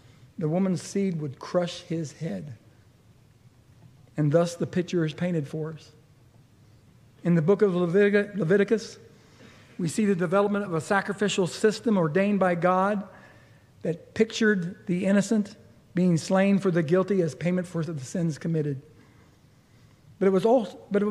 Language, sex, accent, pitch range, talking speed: English, male, American, 140-215 Hz, 135 wpm